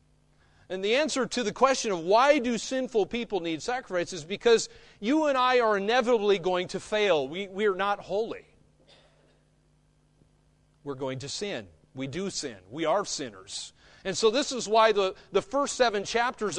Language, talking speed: English, 175 wpm